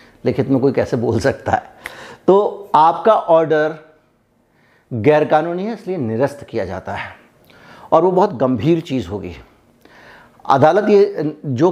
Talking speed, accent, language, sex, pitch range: 135 wpm, native, Hindi, male, 135-170 Hz